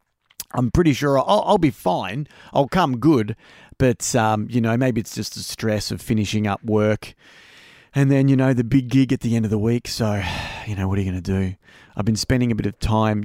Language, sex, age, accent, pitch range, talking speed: English, male, 30-49, Australian, 110-135 Hz, 235 wpm